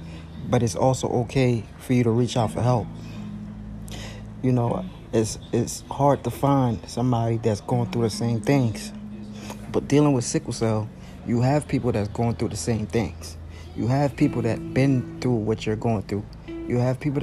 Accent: American